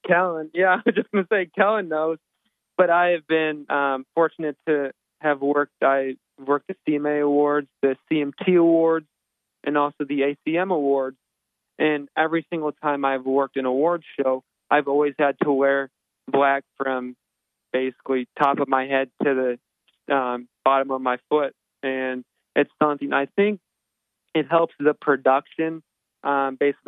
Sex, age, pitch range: male, 20-39, 135-150 Hz